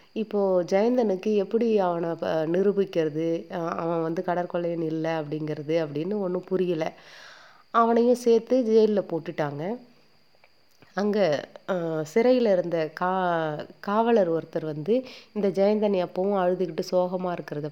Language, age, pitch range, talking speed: Tamil, 30-49, 160-200 Hz, 100 wpm